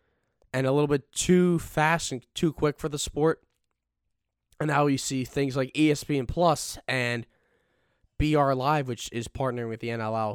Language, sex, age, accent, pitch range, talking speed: English, male, 10-29, American, 120-150 Hz, 170 wpm